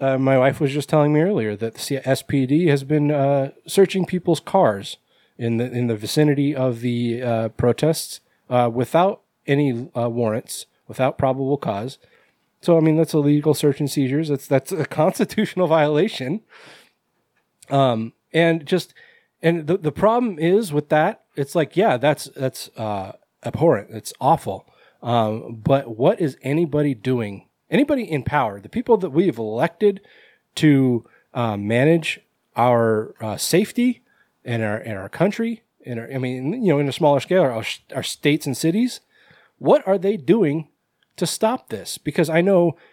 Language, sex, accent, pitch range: English, male, American, 120-170 Hz